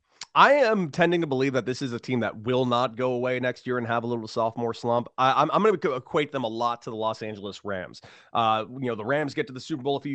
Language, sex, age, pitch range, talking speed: English, male, 30-49, 120-150 Hz, 290 wpm